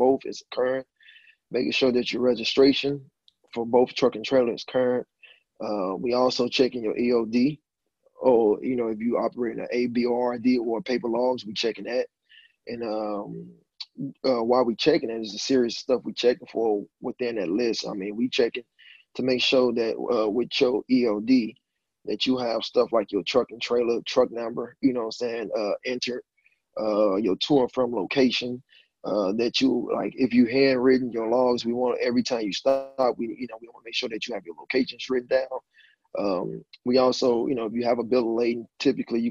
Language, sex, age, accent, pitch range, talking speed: English, male, 20-39, American, 120-130 Hz, 205 wpm